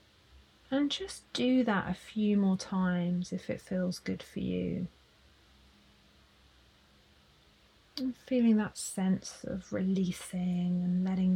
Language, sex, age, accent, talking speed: English, female, 30-49, British, 115 wpm